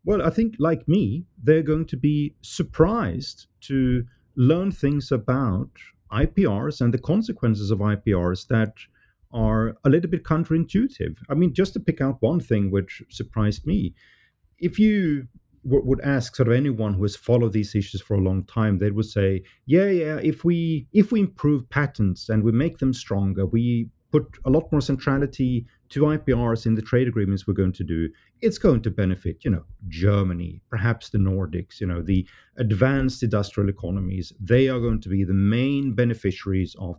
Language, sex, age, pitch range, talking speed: English, male, 40-59, 100-145 Hz, 175 wpm